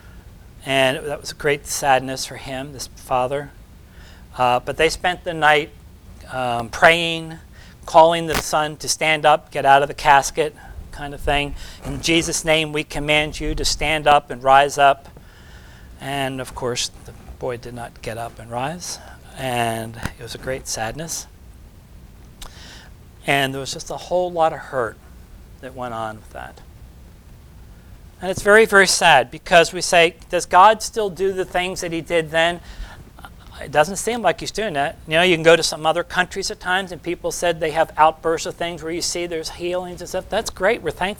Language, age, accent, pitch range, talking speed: English, 40-59, American, 120-170 Hz, 190 wpm